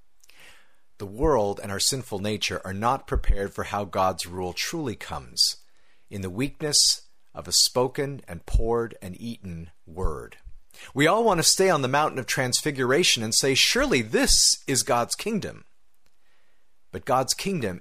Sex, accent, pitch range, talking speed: male, American, 95-135 Hz, 155 wpm